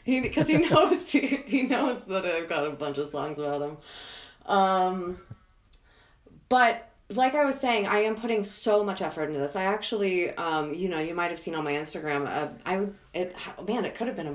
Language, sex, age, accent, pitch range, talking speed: English, female, 30-49, American, 150-205 Hz, 215 wpm